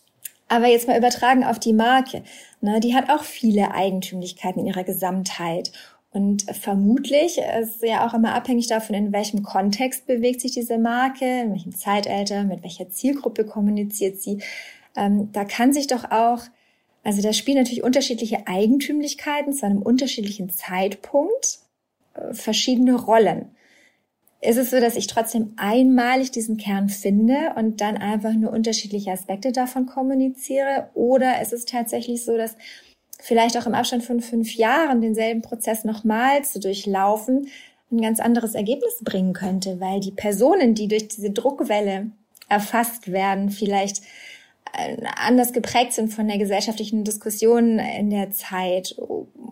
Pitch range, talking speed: 205-250 Hz, 145 wpm